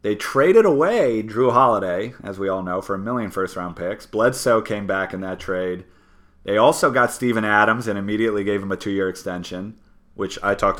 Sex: male